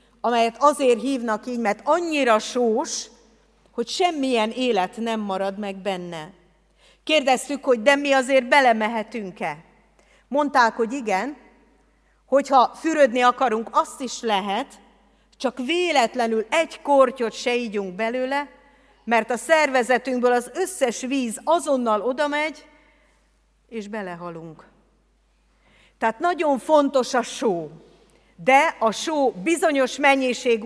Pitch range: 210-275 Hz